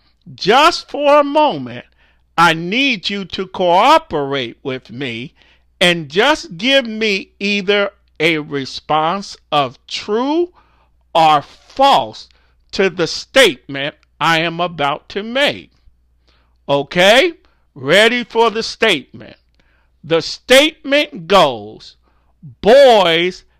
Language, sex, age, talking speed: English, male, 50-69, 100 wpm